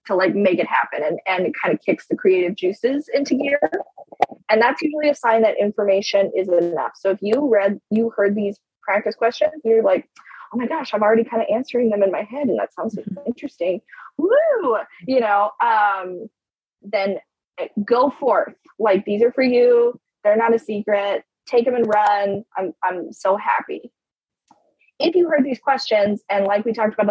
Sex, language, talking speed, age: female, English, 190 wpm, 20-39